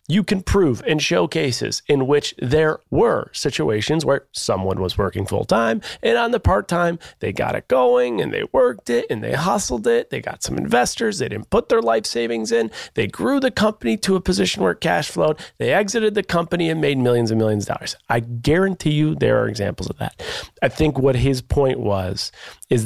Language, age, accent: English, 30-49, American